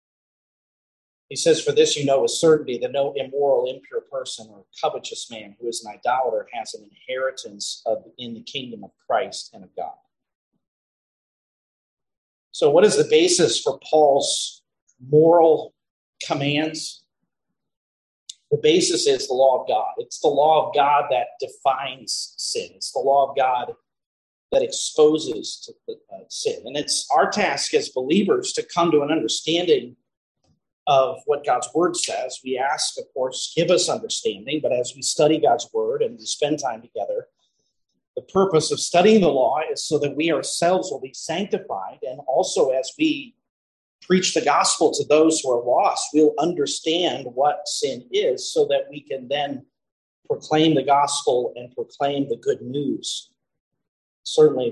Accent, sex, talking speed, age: American, male, 155 wpm, 40-59